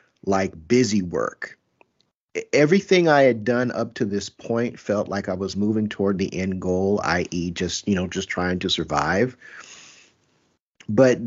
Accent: American